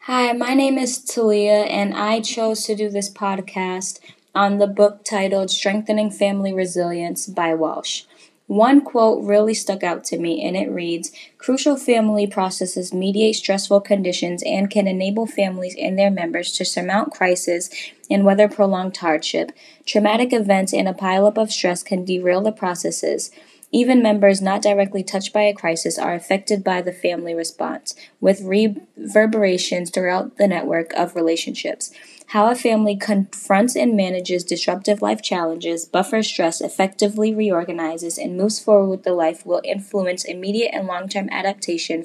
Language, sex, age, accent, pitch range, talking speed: English, female, 10-29, American, 180-215 Hz, 155 wpm